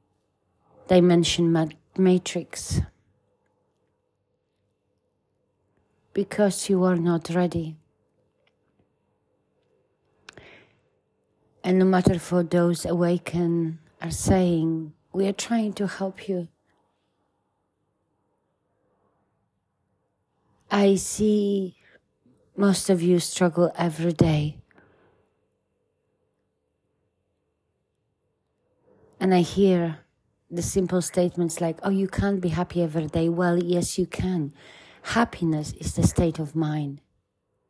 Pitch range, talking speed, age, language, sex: 155-180 Hz, 85 wpm, 30-49, English, female